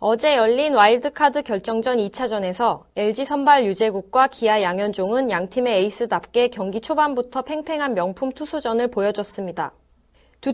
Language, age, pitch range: Korean, 20-39, 215-280 Hz